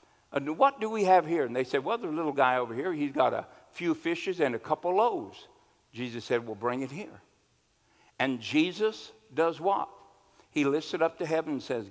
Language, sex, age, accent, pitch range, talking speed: English, male, 60-79, American, 120-170 Hz, 210 wpm